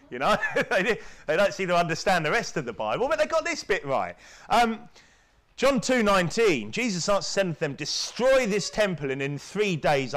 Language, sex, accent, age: English, male, British, 30-49